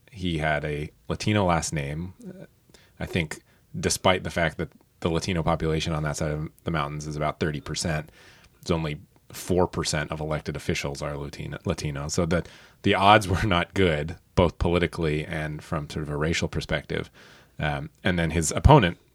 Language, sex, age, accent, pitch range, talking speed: English, male, 30-49, American, 75-90 Hz, 170 wpm